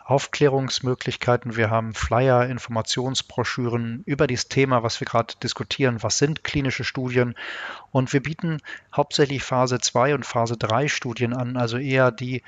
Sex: male